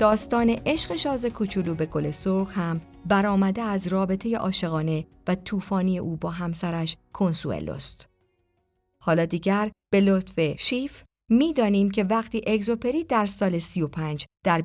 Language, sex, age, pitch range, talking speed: Persian, female, 50-69, 165-225 Hz, 125 wpm